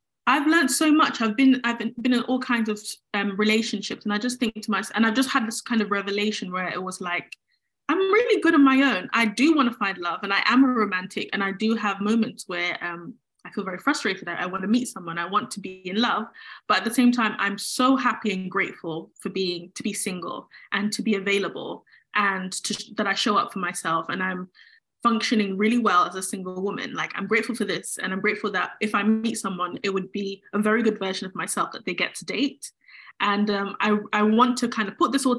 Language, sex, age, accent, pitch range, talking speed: English, female, 10-29, British, 200-240 Hz, 250 wpm